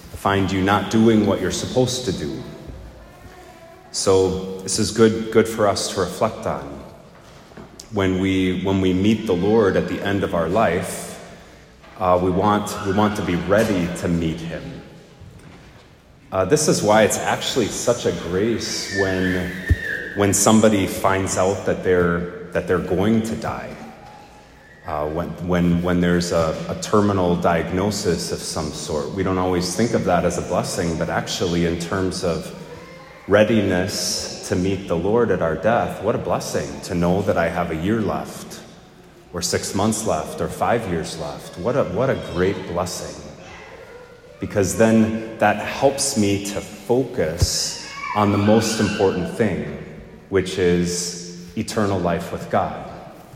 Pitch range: 90-105 Hz